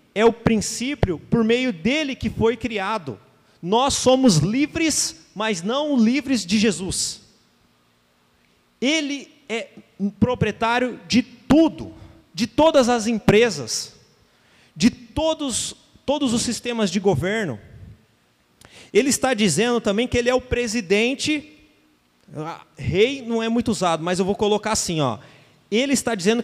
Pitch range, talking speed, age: 195-255 Hz, 130 wpm, 30-49